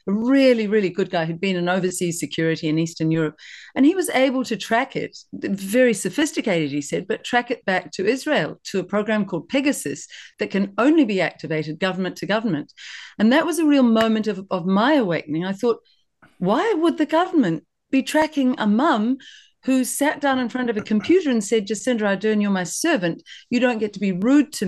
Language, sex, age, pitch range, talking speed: English, female, 50-69, 170-245 Hz, 205 wpm